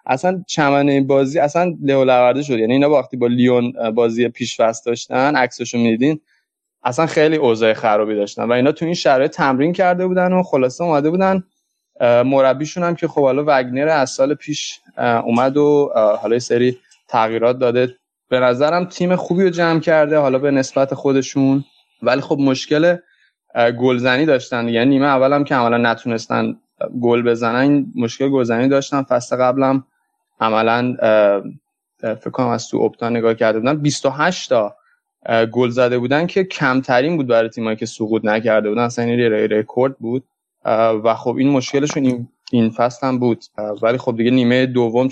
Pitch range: 115-140 Hz